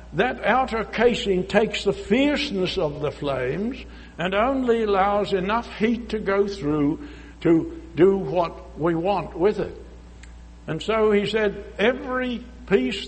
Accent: American